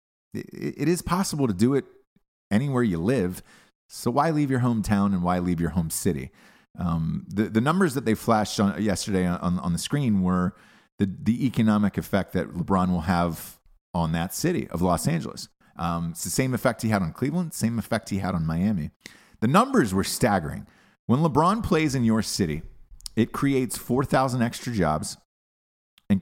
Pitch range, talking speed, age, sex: 85-115 Hz, 185 wpm, 30-49, male